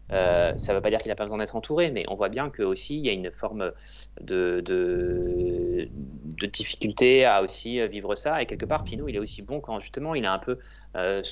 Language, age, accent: French, 30-49, French